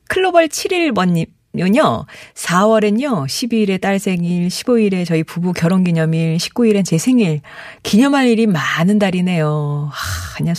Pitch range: 160-225 Hz